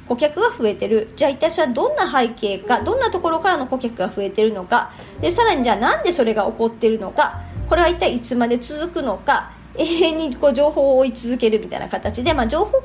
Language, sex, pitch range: Japanese, male, 225-330 Hz